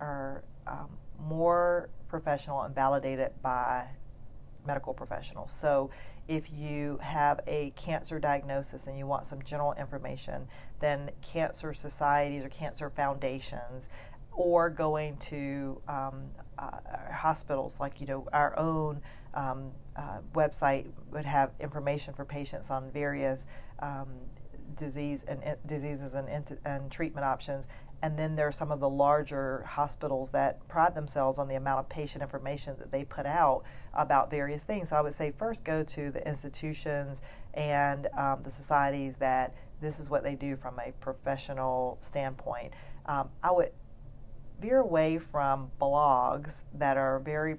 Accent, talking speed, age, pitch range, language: American, 145 wpm, 40-59, 135-150 Hz, English